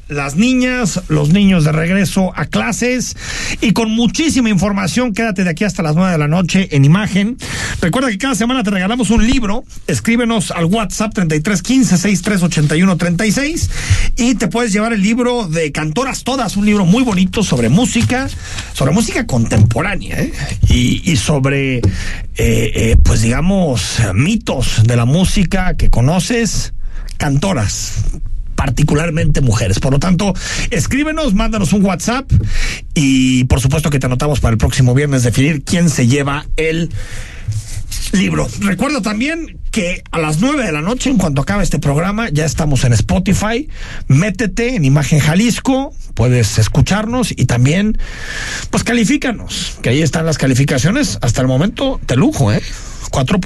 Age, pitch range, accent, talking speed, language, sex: 50-69, 135-220 Hz, Mexican, 150 wpm, Spanish, male